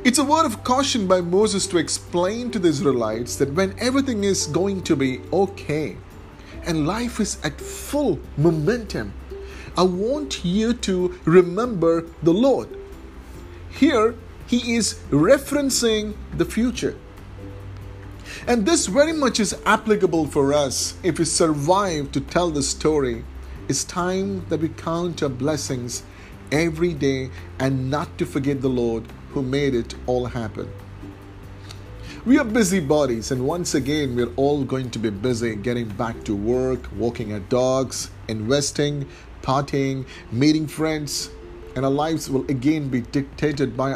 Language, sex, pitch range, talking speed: English, male, 115-175 Hz, 145 wpm